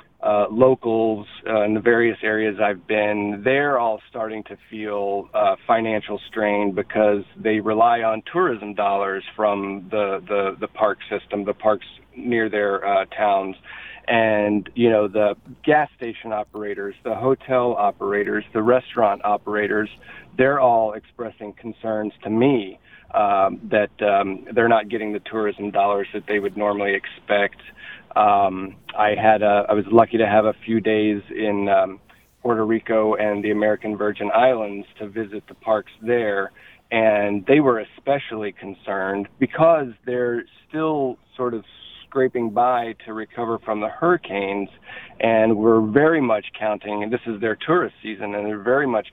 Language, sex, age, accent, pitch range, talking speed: English, male, 40-59, American, 100-115 Hz, 155 wpm